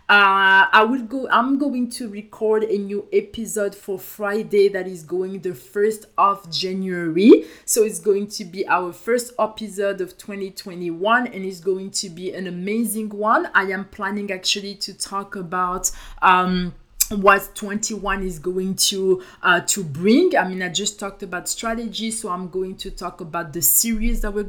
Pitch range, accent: 185-215 Hz, French